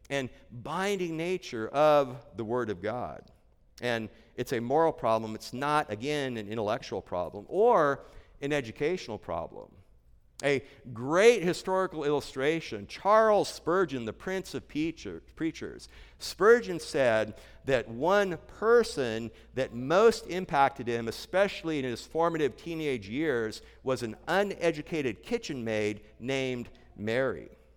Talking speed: 120 wpm